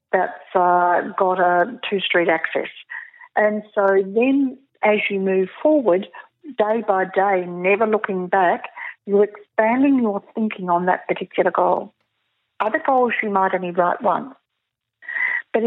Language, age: English, 50-69